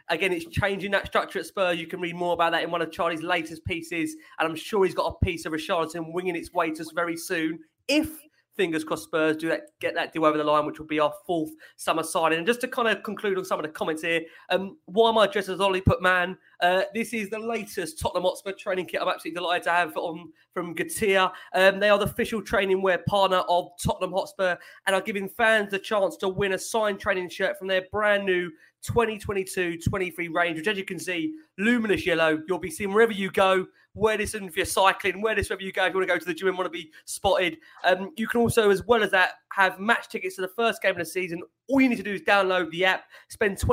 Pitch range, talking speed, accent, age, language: 165-200 Hz, 255 wpm, British, 30-49, English